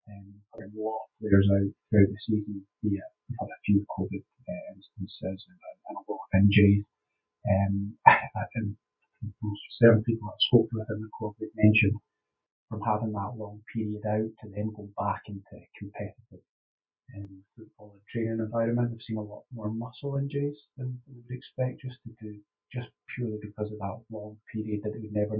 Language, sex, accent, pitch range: English, male, British, 100-110 Hz